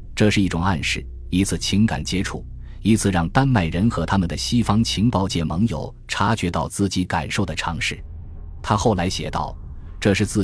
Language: Chinese